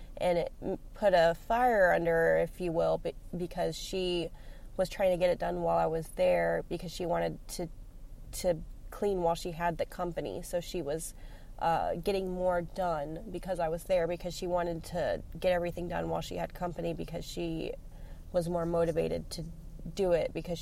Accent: American